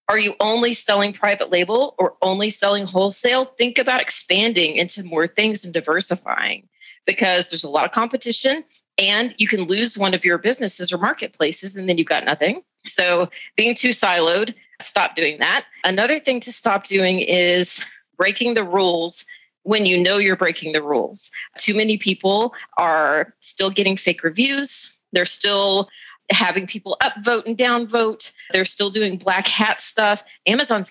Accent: American